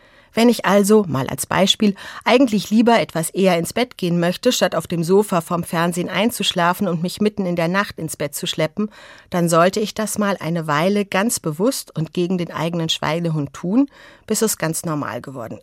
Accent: German